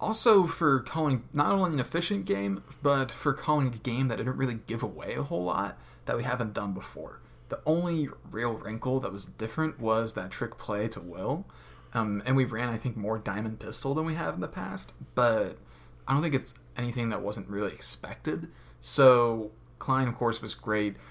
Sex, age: male, 20-39